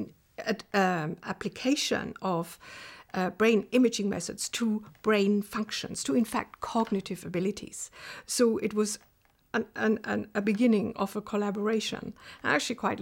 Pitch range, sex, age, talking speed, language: 205-240 Hz, female, 60-79, 135 wpm, English